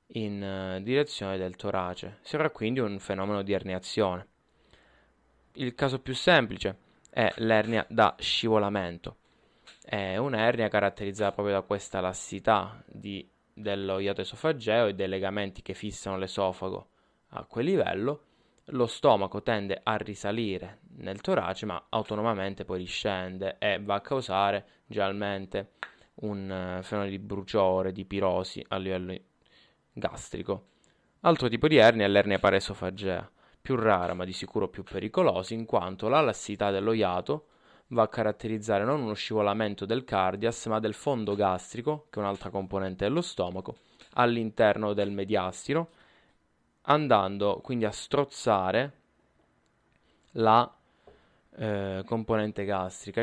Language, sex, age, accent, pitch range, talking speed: Italian, male, 20-39, native, 95-110 Hz, 125 wpm